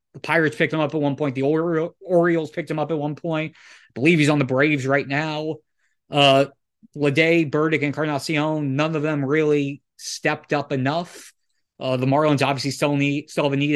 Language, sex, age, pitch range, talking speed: English, male, 20-39, 135-155 Hz, 205 wpm